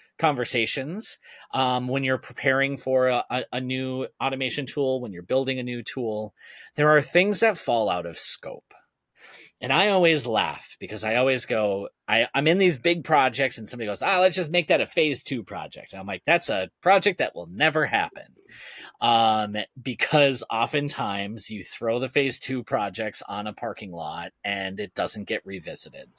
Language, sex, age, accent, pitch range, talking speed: English, male, 30-49, American, 115-150 Hz, 180 wpm